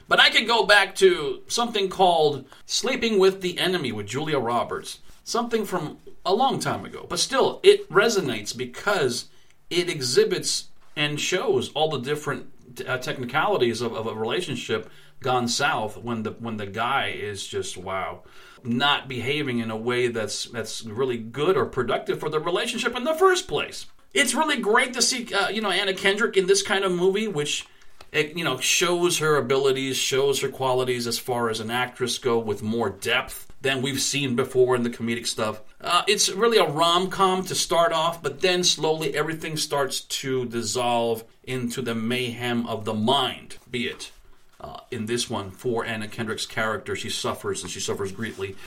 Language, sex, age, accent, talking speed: English, male, 40-59, American, 180 wpm